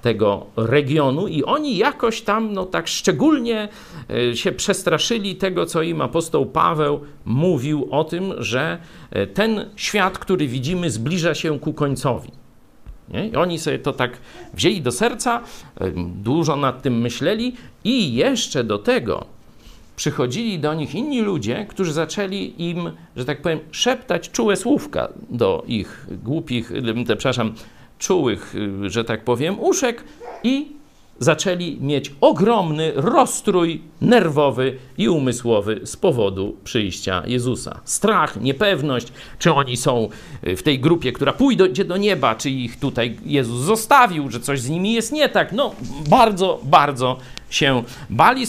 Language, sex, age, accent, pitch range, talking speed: Polish, male, 50-69, native, 125-205 Hz, 135 wpm